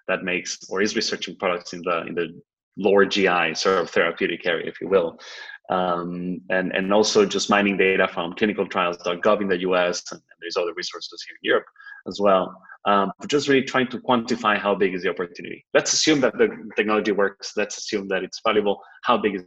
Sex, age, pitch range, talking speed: male, 20-39, 95-135 Hz, 200 wpm